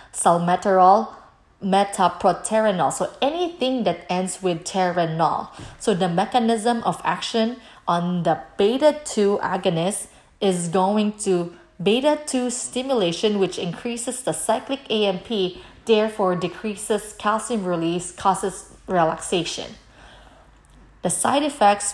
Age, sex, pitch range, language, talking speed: 20-39, female, 175-220 Hz, English, 105 wpm